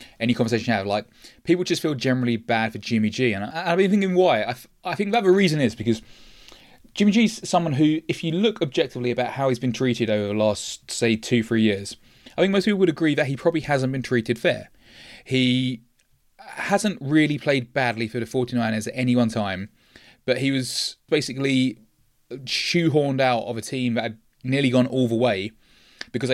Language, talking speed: English, 205 wpm